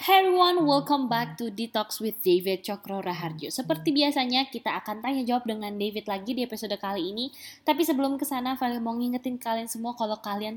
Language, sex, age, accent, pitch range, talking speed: Indonesian, female, 20-39, native, 190-250 Hz, 185 wpm